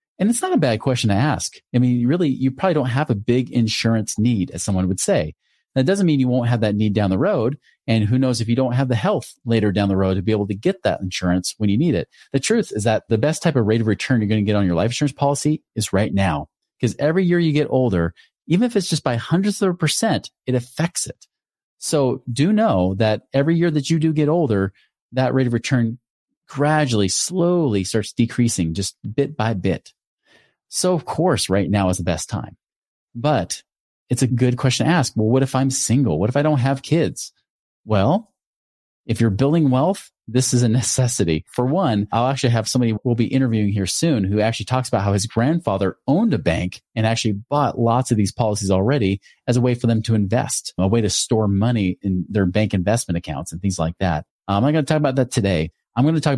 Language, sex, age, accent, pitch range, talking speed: English, male, 40-59, American, 100-140 Hz, 235 wpm